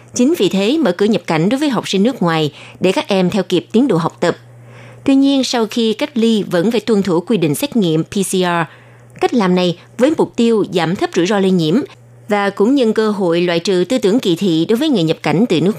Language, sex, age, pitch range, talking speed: Vietnamese, female, 20-39, 170-225 Hz, 255 wpm